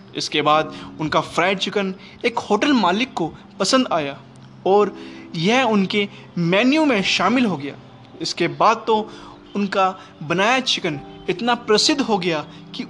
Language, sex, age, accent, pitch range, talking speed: Hindi, male, 20-39, native, 165-220 Hz, 140 wpm